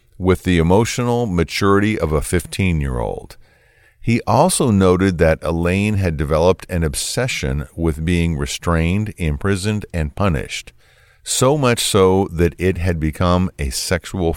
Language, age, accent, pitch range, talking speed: English, 50-69, American, 80-105 Hz, 130 wpm